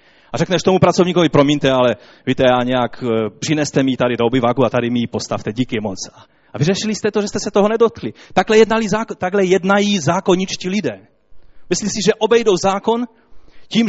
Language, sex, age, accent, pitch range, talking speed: Czech, male, 30-49, native, 125-180 Hz, 190 wpm